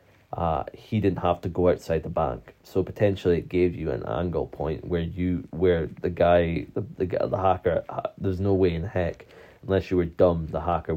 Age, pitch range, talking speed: 20-39, 85-95 Hz, 210 wpm